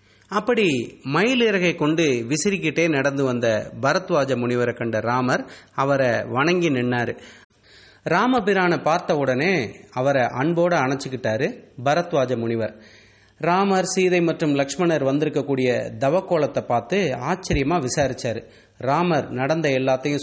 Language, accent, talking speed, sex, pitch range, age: English, Indian, 100 wpm, male, 120-165 Hz, 30-49